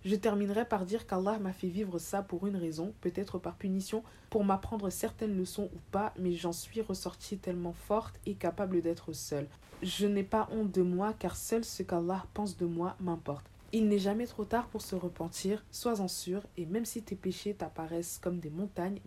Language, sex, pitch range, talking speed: French, female, 165-200 Hz, 200 wpm